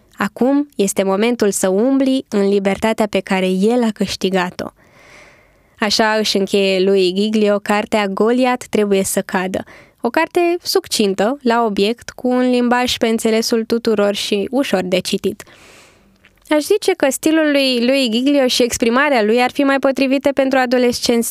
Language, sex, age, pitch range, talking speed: Romanian, female, 20-39, 200-280 Hz, 150 wpm